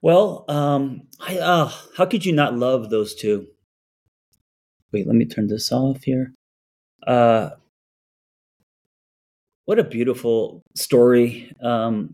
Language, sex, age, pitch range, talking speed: English, male, 30-49, 110-140 Hz, 120 wpm